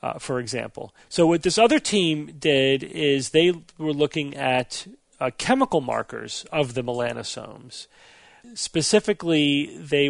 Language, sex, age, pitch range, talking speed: English, male, 40-59, 130-155 Hz, 130 wpm